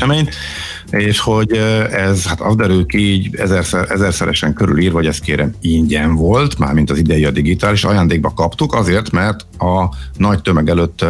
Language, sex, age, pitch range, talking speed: Hungarian, male, 50-69, 80-100 Hz, 150 wpm